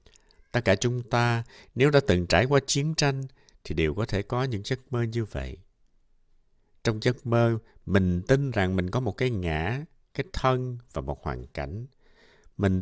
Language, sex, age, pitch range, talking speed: Vietnamese, male, 60-79, 80-120 Hz, 185 wpm